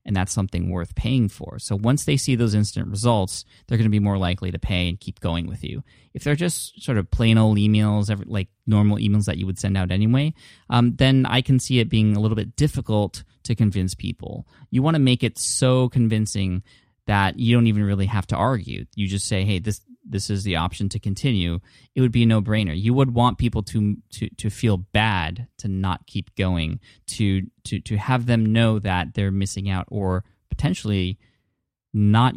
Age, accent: 20-39, American